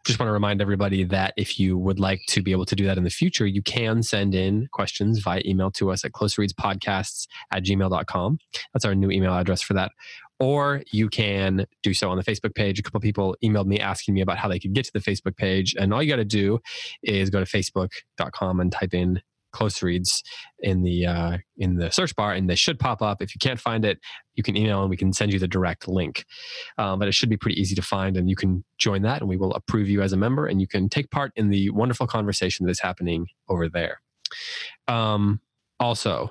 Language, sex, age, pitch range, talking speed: English, male, 20-39, 95-110 Hz, 240 wpm